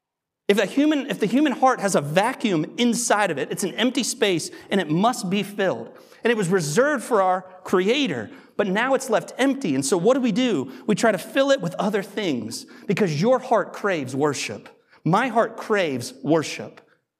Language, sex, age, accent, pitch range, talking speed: English, male, 30-49, American, 150-220 Hz, 200 wpm